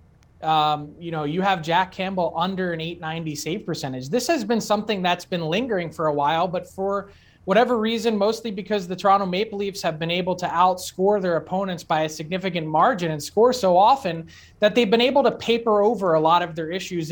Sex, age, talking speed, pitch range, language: male, 20-39, 205 wpm, 170-210 Hz, English